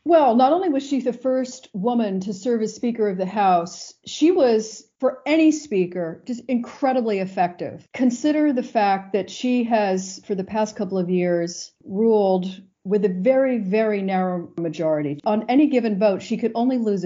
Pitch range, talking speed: 180-230 Hz, 175 wpm